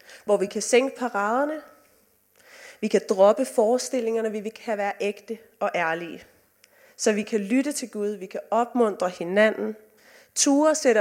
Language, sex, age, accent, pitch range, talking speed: Danish, female, 30-49, native, 195-255 Hz, 155 wpm